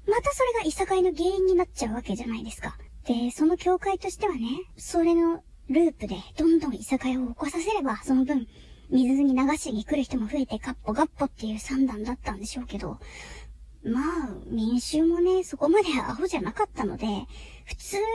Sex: male